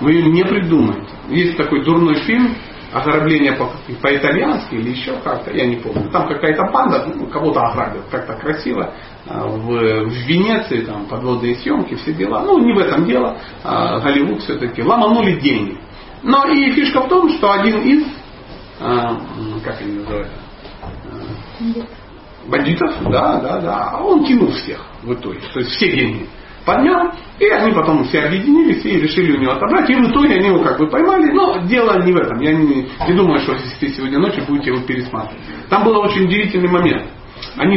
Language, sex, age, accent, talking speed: Russian, male, 40-59, native, 165 wpm